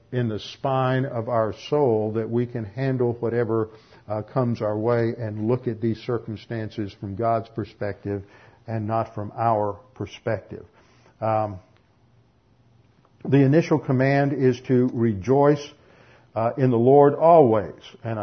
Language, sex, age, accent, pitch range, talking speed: English, male, 50-69, American, 110-145 Hz, 135 wpm